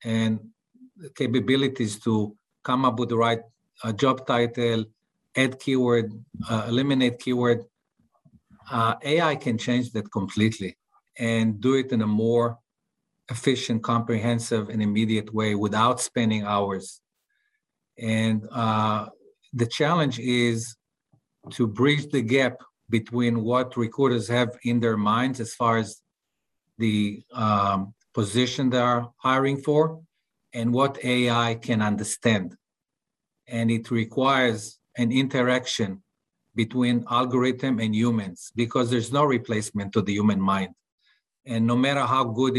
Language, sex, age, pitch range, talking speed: English, male, 50-69, 110-130 Hz, 125 wpm